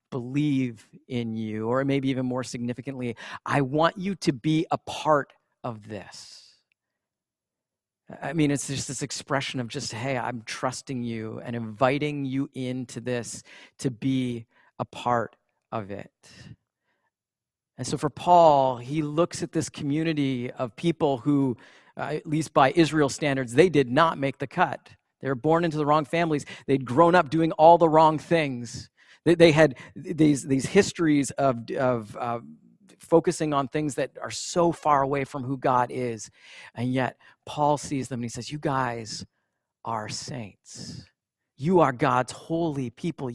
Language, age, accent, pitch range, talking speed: English, 40-59, American, 125-150 Hz, 160 wpm